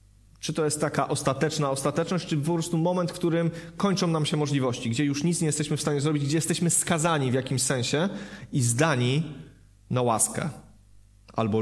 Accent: native